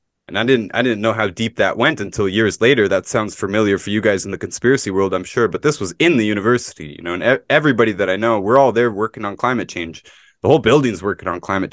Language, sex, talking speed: English, male, 260 wpm